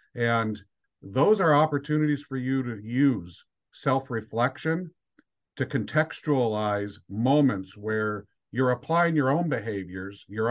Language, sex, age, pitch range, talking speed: English, male, 50-69, 105-130 Hz, 110 wpm